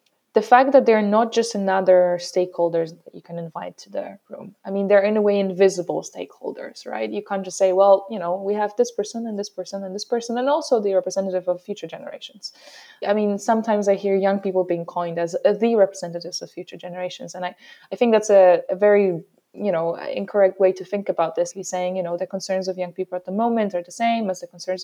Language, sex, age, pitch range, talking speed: English, female, 20-39, 180-205 Hz, 235 wpm